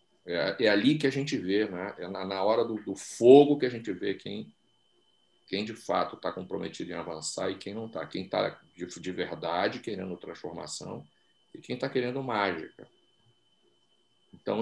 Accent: Brazilian